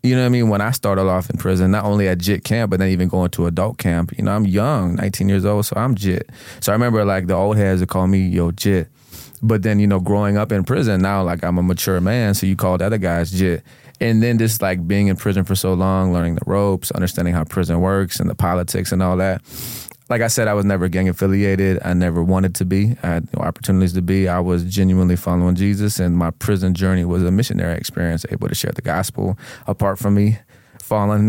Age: 20-39